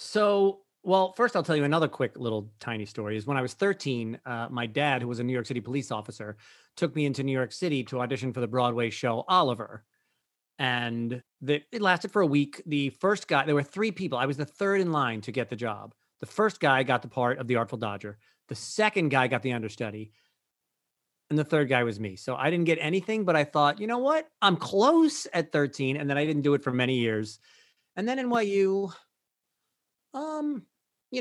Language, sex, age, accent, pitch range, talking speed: English, male, 30-49, American, 120-160 Hz, 220 wpm